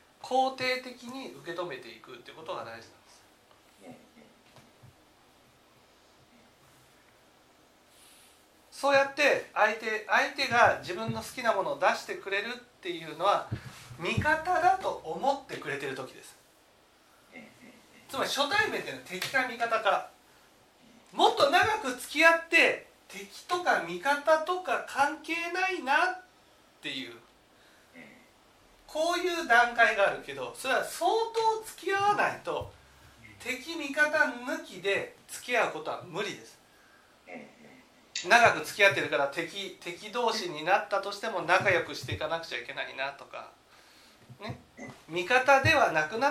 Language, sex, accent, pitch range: Japanese, male, native, 195-330 Hz